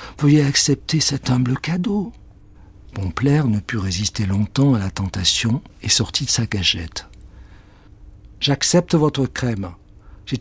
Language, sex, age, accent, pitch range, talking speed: French, male, 60-79, French, 105-155 Hz, 145 wpm